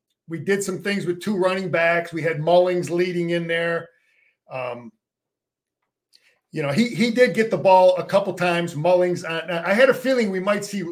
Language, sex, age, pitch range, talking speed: English, male, 40-59, 170-205 Hz, 190 wpm